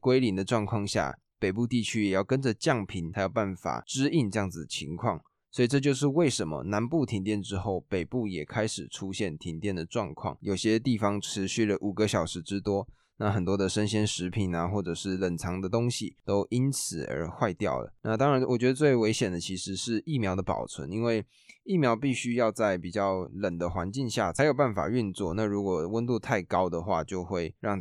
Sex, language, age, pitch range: male, Chinese, 20-39, 95-120 Hz